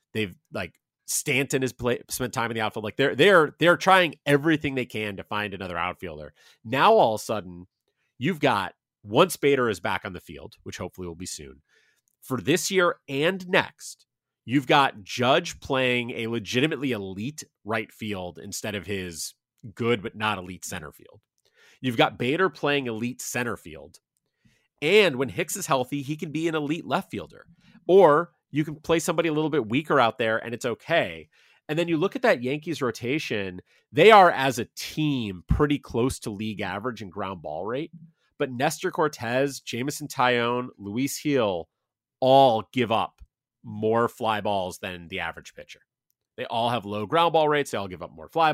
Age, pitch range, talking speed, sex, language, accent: 30-49, 105-145 Hz, 185 wpm, male, English, American